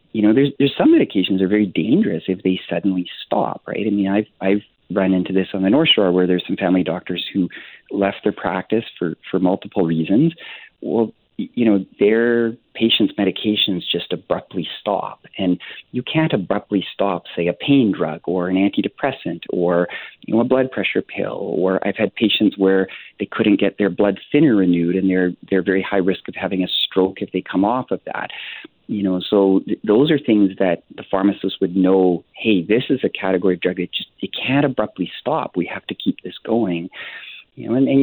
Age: 40-59